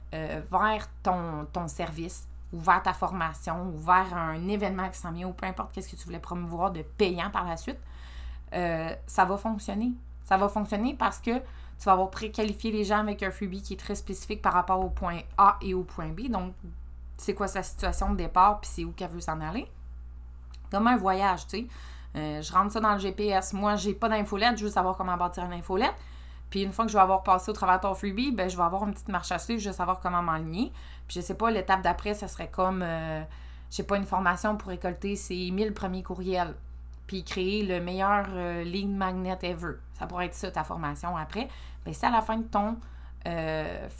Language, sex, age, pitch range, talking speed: French, female, 20-39, 160-200 Hz, 235 wpm